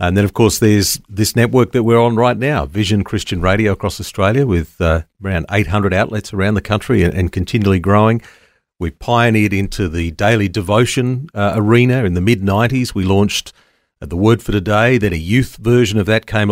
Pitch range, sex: 95-115 Hz, male